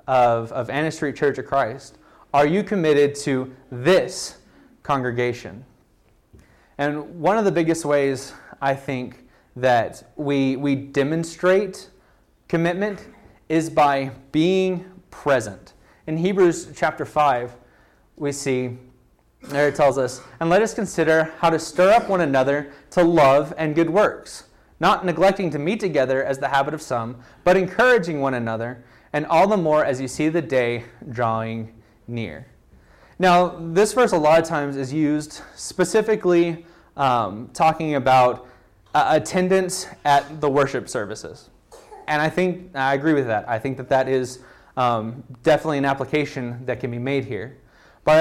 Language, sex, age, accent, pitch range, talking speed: English, male, 30-49, American, 125-165 Hz, 150 wpm